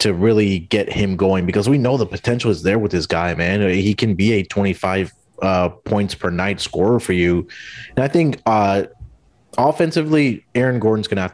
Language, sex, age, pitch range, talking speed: English, male, 30-49, 90-110 Hz, 200 wpm